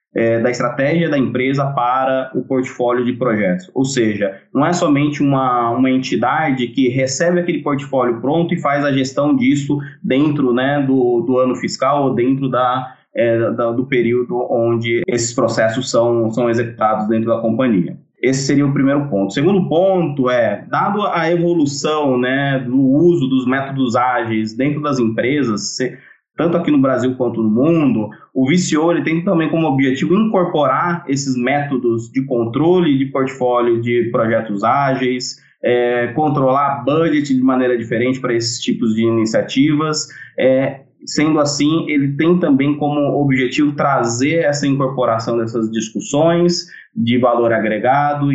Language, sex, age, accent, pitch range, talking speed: Portuguese, male, 20-39, Brazilian, 120-145 Hz, 155 wpm